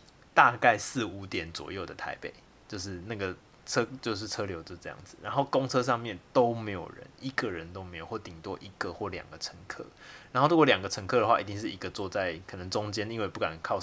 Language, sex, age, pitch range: Chinese, male, 20-39, 90-110 Hz